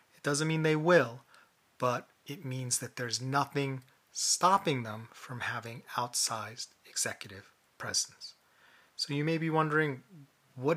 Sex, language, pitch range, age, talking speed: male, English, 120-145 Hz, 30-49, 130 wpm